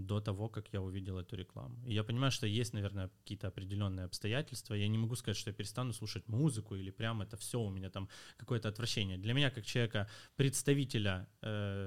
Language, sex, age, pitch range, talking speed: Ukrainian, male, 20-39, 100-120 Hz, 190 wpm